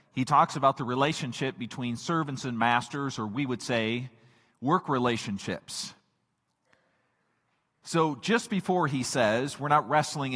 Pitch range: 120-165 Hz